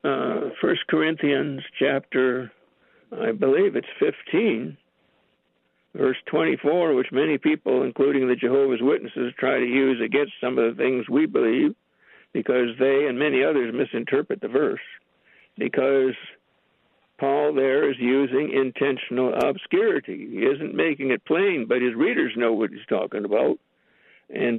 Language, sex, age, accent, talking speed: English, male, 60-79, American, 135 wpm